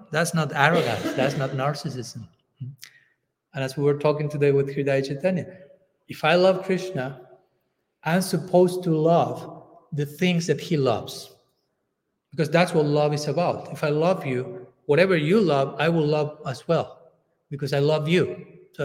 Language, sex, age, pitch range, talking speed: English, male, 30-49, 145-180 Hz, 160 wpm